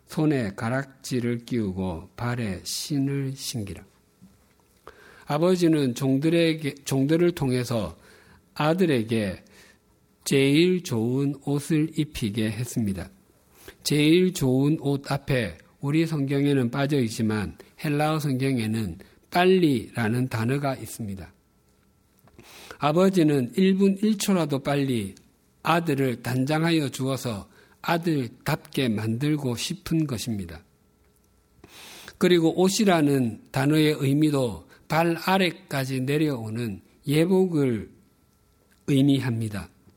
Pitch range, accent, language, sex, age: 115-160 Hz, native, Korean, male, 50-69